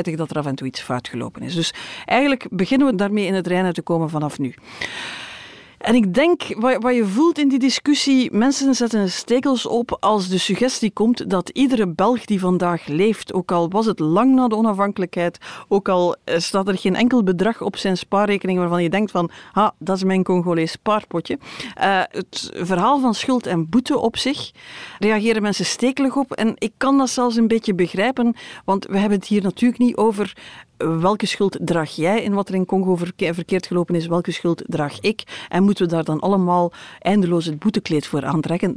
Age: 40-59